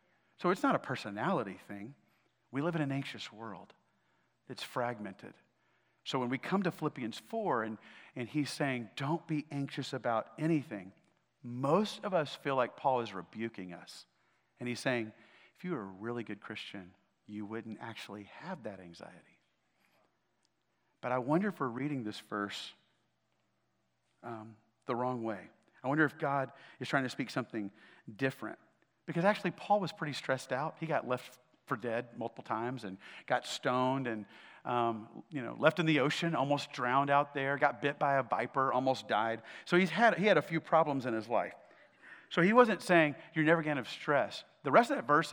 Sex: male